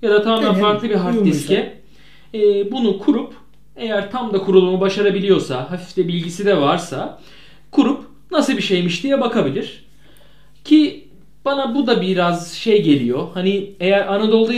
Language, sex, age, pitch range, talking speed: Turkish, male, 40-59, 180-220 Hz, 145 wpm